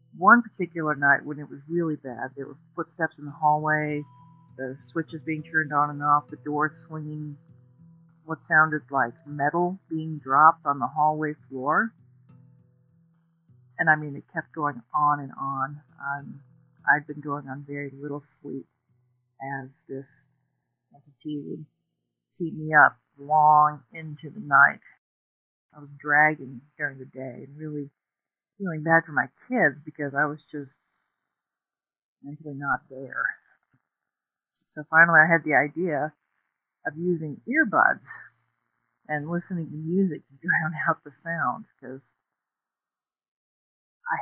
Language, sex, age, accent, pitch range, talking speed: English, female, 50-69, American, 140-165 Hz, 135 wpm